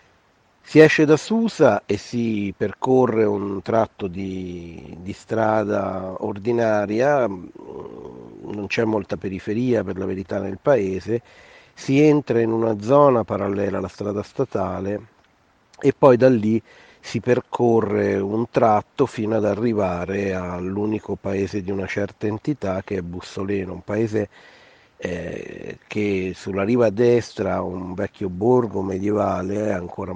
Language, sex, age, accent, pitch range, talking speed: Italian, male, 50-69, native, 95-115 Hz, 125 wpm